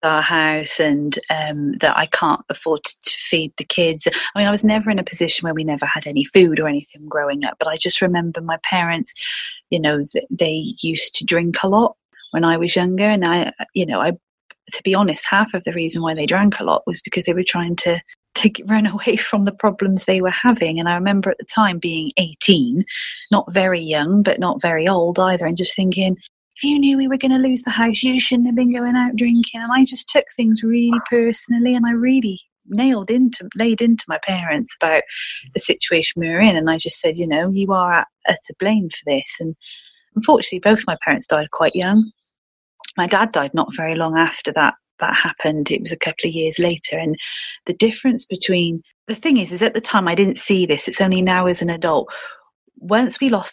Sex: female